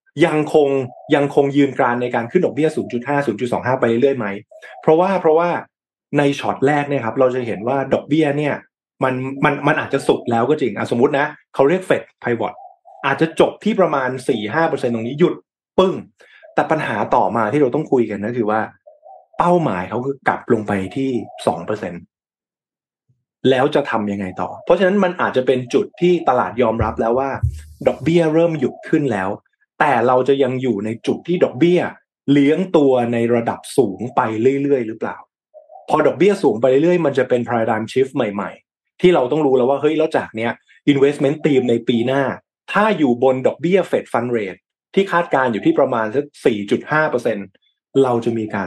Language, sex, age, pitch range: Thai, male, 20-39, 115-155 Hz